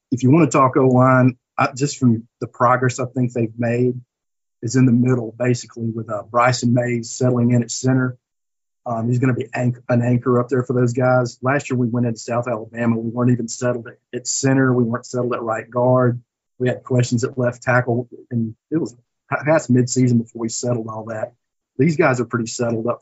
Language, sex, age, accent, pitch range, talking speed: English, male, 50-69, American, 120-130 Hz, 215 wpm